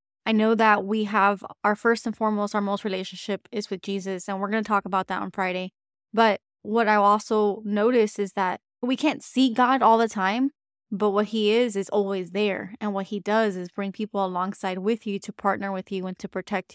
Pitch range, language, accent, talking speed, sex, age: 195-220 Hz, English, American, 220 wpm, female, 20-39